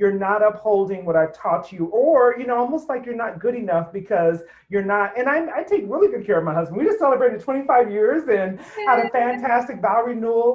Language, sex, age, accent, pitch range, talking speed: English, male, 40-59, American, 165-230 Hz, 230 wpm